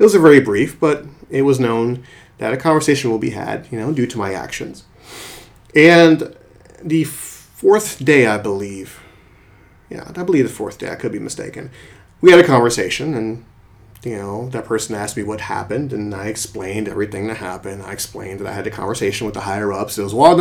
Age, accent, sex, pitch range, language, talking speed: 30-49, American, male, 105-140 Hz, English, 205 wpm